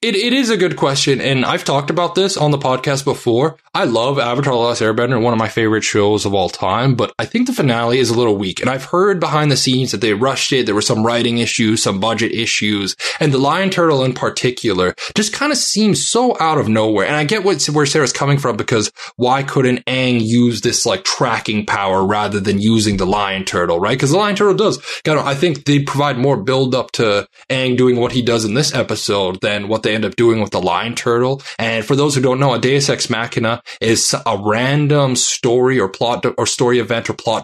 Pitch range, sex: 110-145 Hz, male